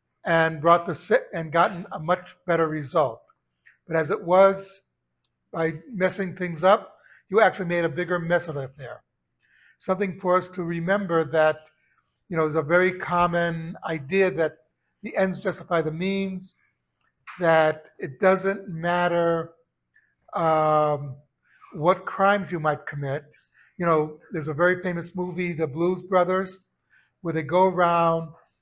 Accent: American